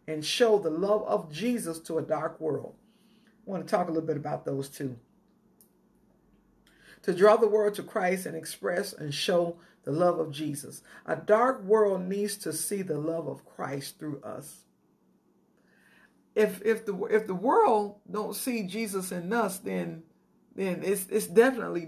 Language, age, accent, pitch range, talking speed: English, 50-69, American, 165-230 Hz, 165 wpm